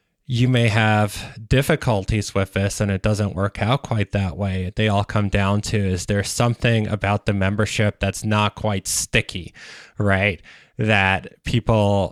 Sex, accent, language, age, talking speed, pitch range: male, American, English, 20-39, 160 wpm, 95-115 Hz